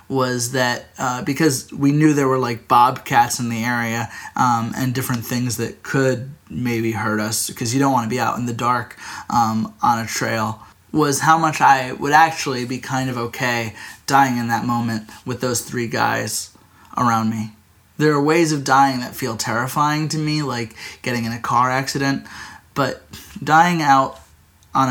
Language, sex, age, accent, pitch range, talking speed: English, male, 20-39, American, 115-140 Hz, 185 wpm